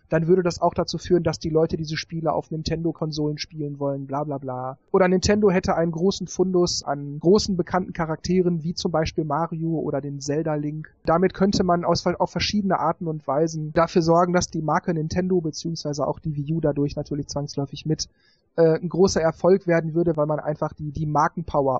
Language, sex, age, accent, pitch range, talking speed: German, male, 40-59, German, 150-185 Hz, 195 wpm